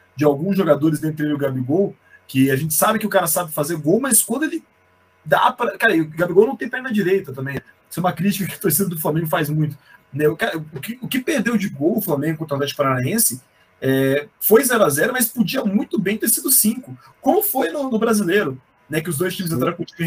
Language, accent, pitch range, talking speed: Portuguese, Brazilian, 150-205 Hz, 220 wpm